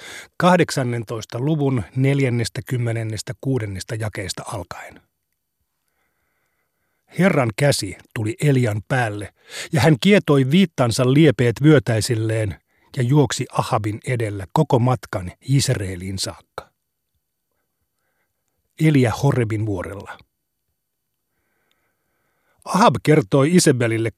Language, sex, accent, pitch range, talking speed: Finnish, male, native, 110-145 Hz, 75 wpm